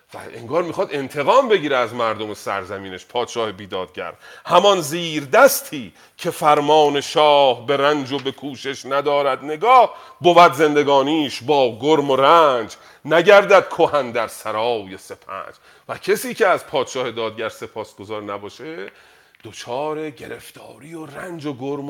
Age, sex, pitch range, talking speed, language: 40-59, male, 125-165 Hz, 135 wpm, Persian